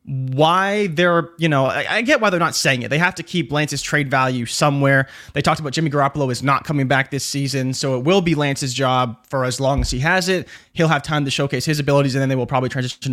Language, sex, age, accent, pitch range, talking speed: English, male, 20-39, American, 130-170 Hz, 255 wpm